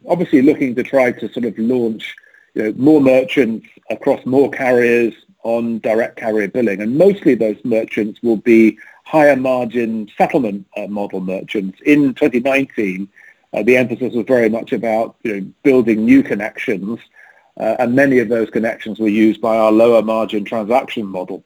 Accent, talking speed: British, 165 wpm